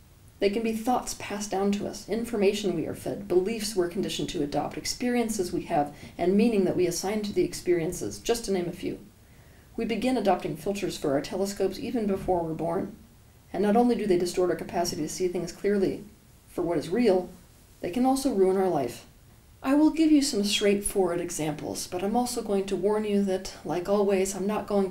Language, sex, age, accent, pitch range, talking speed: English, female, 40-59, American, 180-230 Hz, 205 wpm